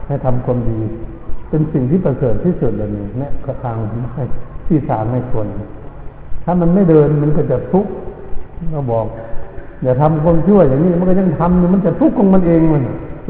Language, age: Thai, 60-79